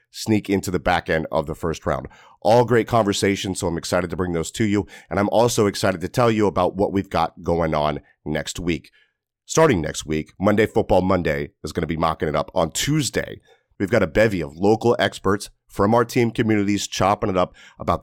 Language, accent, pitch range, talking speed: English, American, 90-115 Hz, 215 wpm